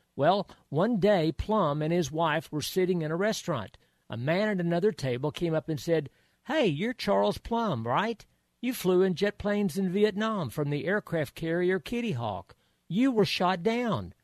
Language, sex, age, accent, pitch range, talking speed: English, male, 50-69, American, 130-195 Hz, 180 wpm